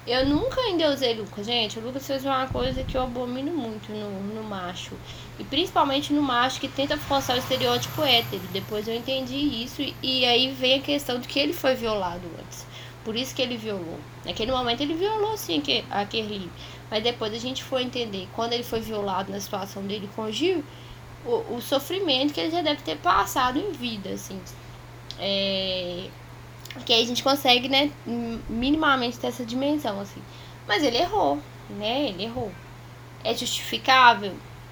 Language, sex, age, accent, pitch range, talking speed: Portuguese, female, 10-29, Brazilian, 215-285 Hz, 175 wpm